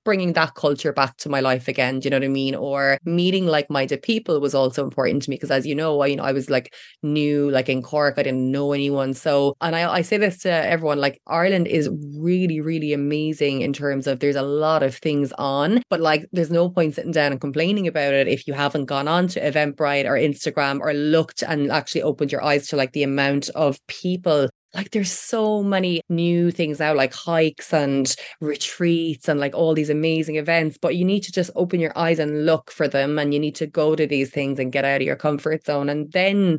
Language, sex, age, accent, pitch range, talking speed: English, female, 20-39, Irish, 145-170 Hz, 235 wpm